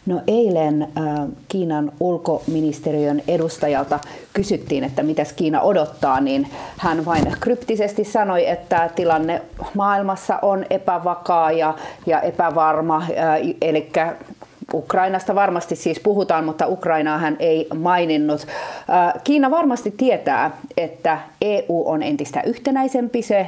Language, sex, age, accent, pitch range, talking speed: Finnish, female, 40-59, native, 155-200 Hz, 110 wpm